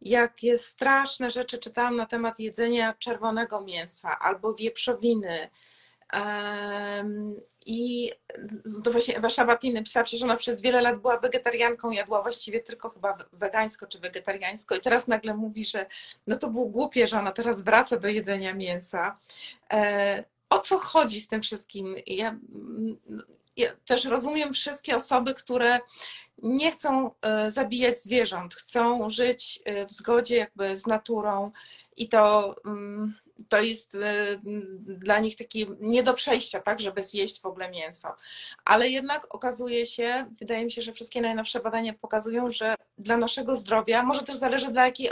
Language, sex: Polish, female